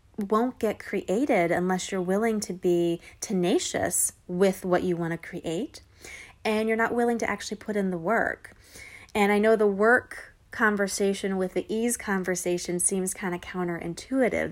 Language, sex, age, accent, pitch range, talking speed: English, female, 30-49, American, 175-210 Hz, 160 wpm